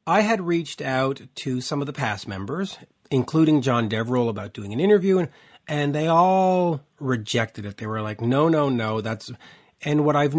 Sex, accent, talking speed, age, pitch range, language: male, American, 190 wpm, 40-59, 120-165 Hz, English